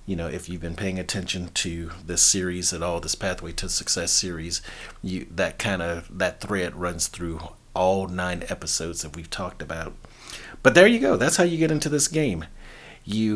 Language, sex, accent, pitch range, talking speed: English, male, American, 90-125 Hz, 200 wpm